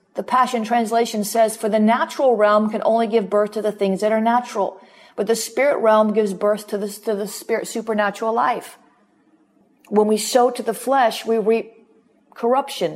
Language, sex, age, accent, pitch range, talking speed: English, female, 40-59, American, 205-230 Hz, 185 wpm